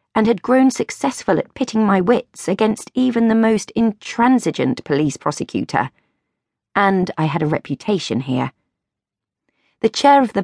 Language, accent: English, British